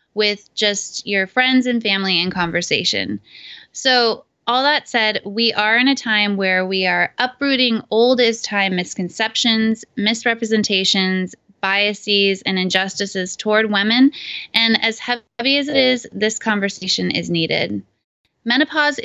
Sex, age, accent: female, 20-39, American